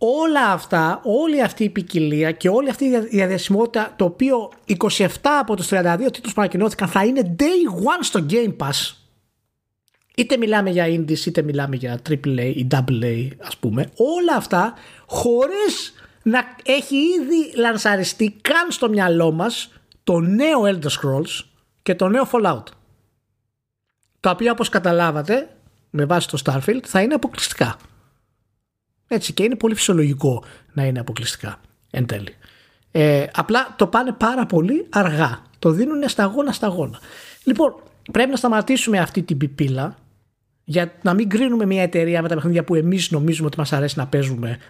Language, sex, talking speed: Greek, male, 150 wpm